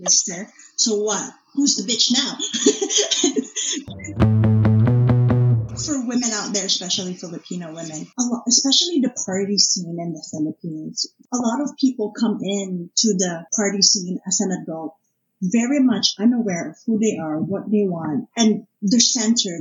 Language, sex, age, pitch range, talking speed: English, female, 30-49, 180-235 Hz, 145 wpm